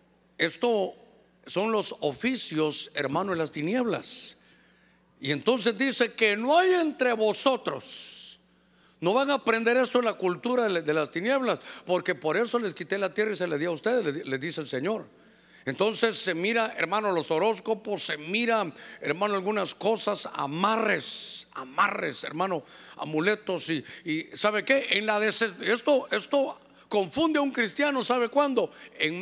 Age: 50-69